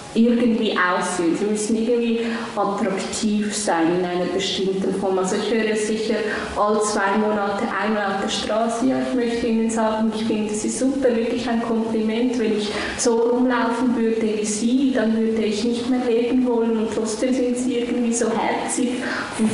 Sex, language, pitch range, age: female, German, 195-230 Hz, 20-39